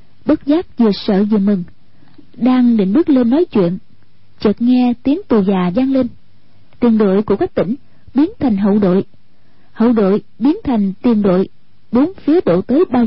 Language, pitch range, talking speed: Vietnamese, 200-275 Hz, 180 wpm